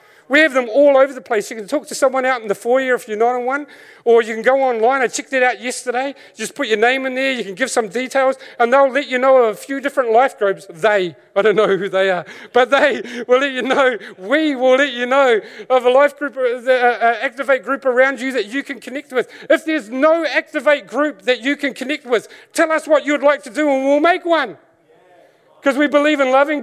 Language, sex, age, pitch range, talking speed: English, male, 40-59, 250-295 Hz, 250 wpm